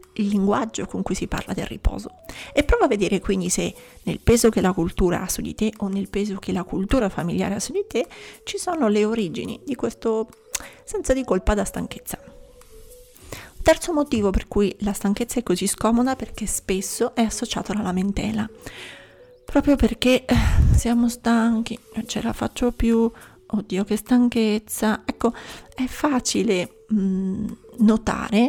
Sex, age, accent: female, 30-49, native